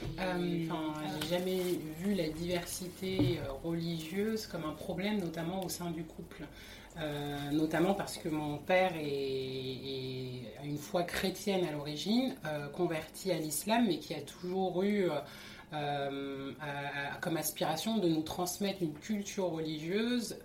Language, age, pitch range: French, 30-49, 150-185 Hz